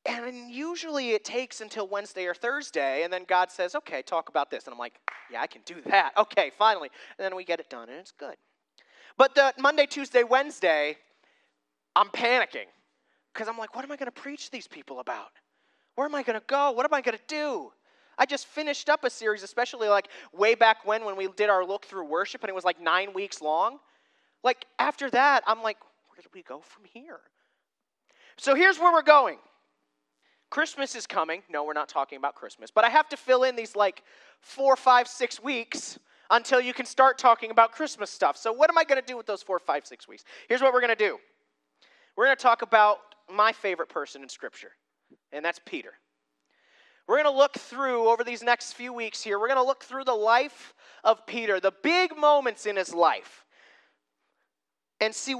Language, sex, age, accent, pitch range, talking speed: English, male, 30-49, American, 200-270 Hz, 210 wpm